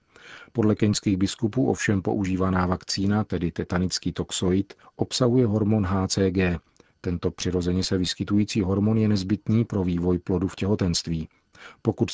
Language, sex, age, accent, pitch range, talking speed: Czech, male, 40-59, native, 90-105 Hz, 125 wpm